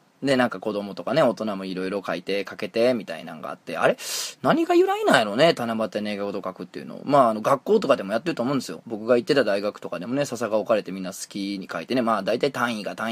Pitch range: 100-130 Hz